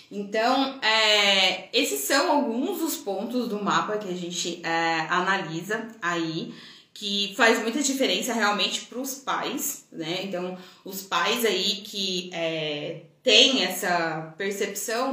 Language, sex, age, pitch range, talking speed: Portuguese, female, 20-39, 190-260 Hz, 120 wpm